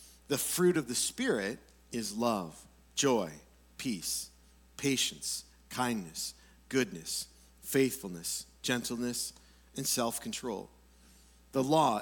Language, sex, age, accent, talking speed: English, male, 50-69, American, 90 wpm